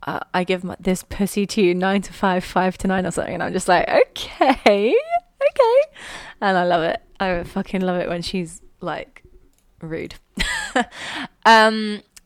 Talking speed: 165 wpm